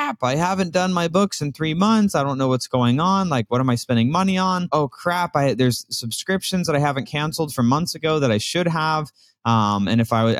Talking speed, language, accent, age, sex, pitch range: 240 wpm, English, American, 20-39, male, 115-145 Hz